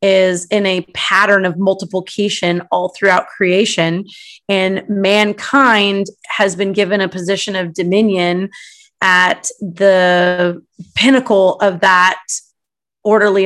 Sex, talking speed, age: female, 105 wpm, 30-49